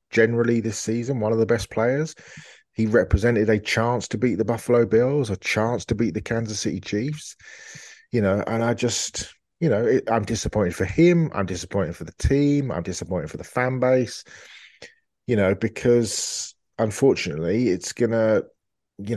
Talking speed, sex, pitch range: 170 wpm, male, 95-115 Hz